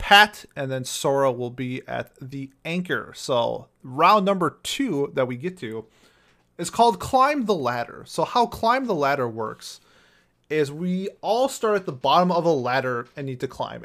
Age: 30-49